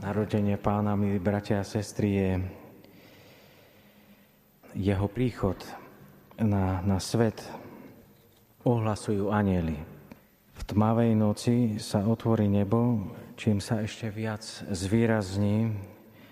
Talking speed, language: 90 wpm, Slovak